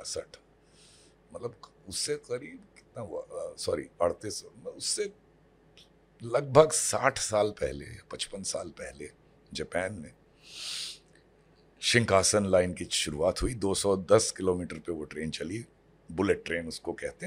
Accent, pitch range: native, 90-150 Hz